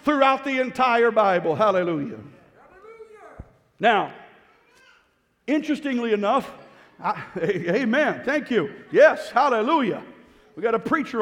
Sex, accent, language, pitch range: male, American, English, 210-265 Hz